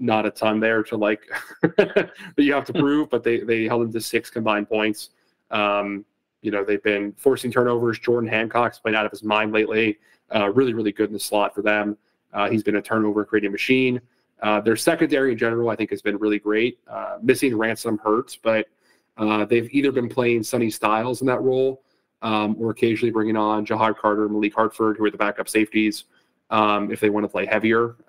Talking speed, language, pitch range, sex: 210 wpm, English, 105-120 Hz, male